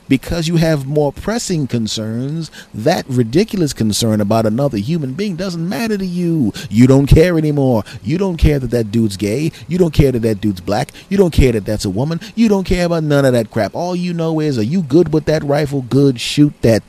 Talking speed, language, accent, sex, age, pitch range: 225 wpm, English, American, male, 40-59, 120-180 Hz